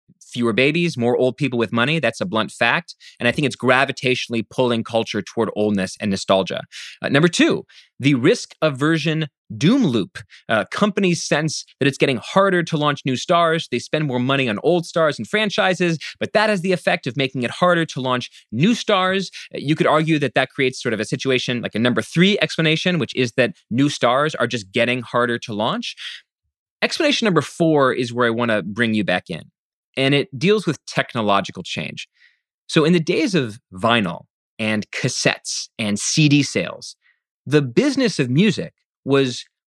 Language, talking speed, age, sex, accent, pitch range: English, 185 wpm, 30-49, male, American, 125-180 Hz